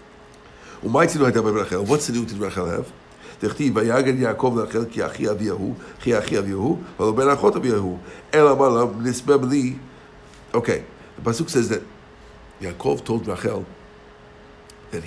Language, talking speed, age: English, 60 wpm, 60-79